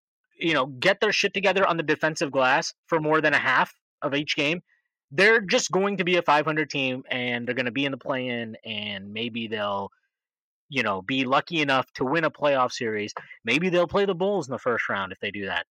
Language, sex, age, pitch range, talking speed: English, male, 20-39, 135-195 Hz, 230 wpm